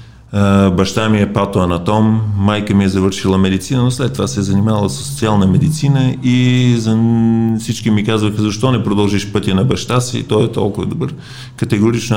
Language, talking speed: Bulgarian, 175 wpm